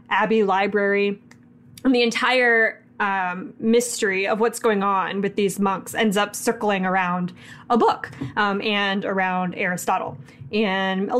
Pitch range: 195-240 Hz